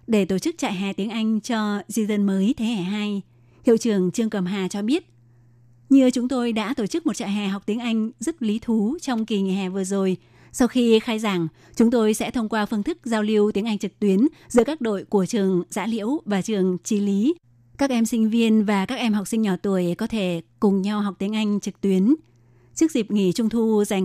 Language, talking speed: Vietnamese, 240 wpm